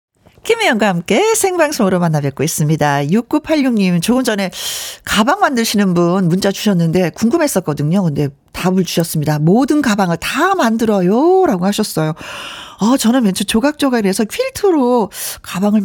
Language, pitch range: Korean, 180-265 Hz